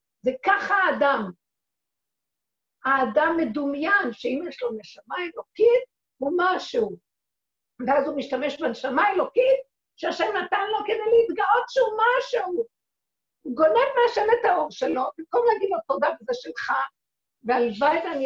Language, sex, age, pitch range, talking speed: Hebrew, female, 50-69, 235-395 Hz, 125 wpm